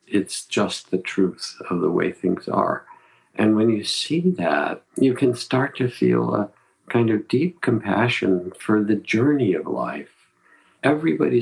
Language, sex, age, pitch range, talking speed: English, male, 50-69, 95-110 Hz, 160 wpm